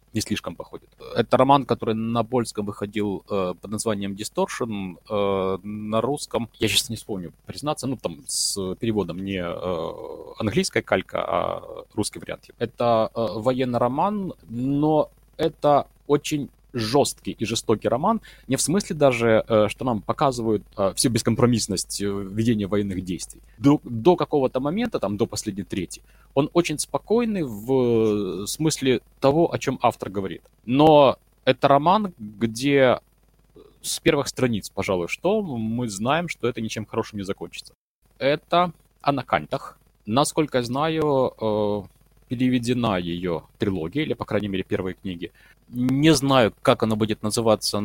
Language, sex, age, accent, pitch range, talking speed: Russian, male, 20-39, native, 105-145 Hz, 135 wpm